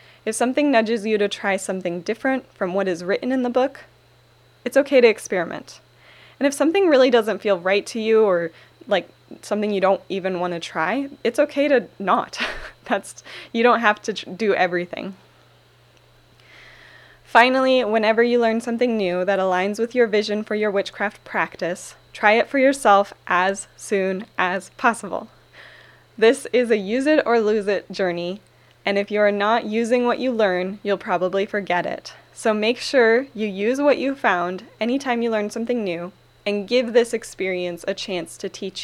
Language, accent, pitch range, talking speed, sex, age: English, American, 185-240 Hz, 175 wpm, female, 20-39